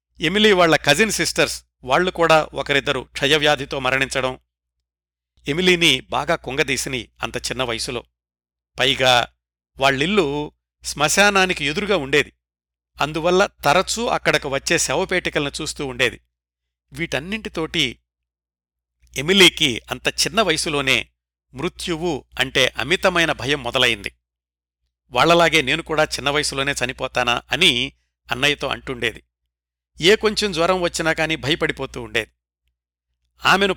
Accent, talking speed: native, 95 wpm